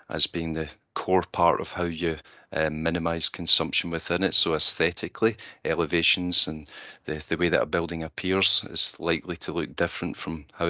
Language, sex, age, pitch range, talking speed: English, male, 40-59, 80-95 Hz, 175 wpm